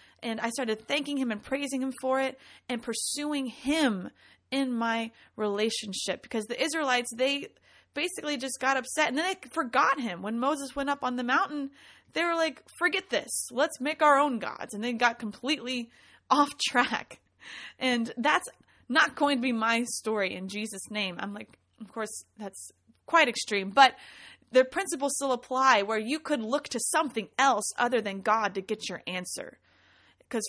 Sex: female